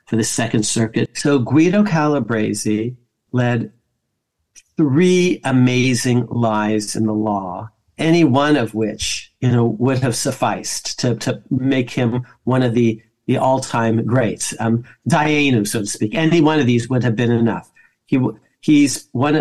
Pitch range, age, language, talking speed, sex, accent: 120-150 Hz, 50-69, English, 150 wpm, male, American